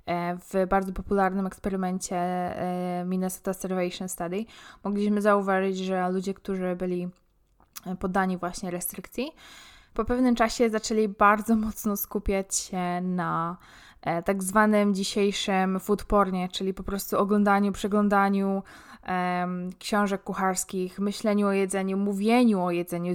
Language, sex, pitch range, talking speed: Polish, female, 185-215 Hz, 110 wpm